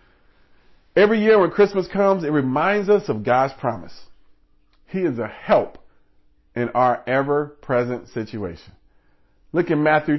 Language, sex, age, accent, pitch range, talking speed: English, male, 40-59, American, 120-195 Hz, 135 wpm